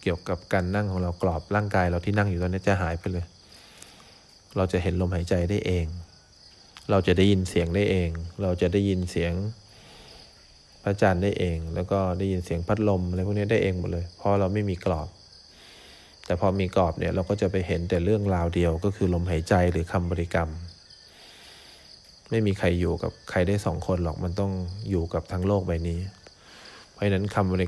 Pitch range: 85-100 Hz